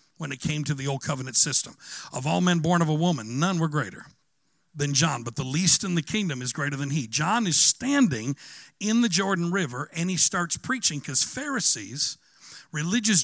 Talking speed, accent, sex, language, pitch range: 200 wpm, American, male, English, 150-210 Hz